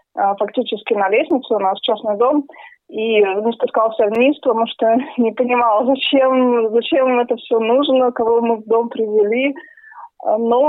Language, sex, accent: Russian, female, native